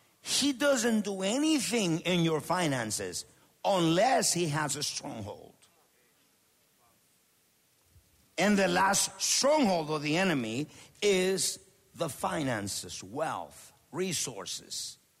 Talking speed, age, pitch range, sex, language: 95 wpm, 50-69, 140-210 Hz, male, English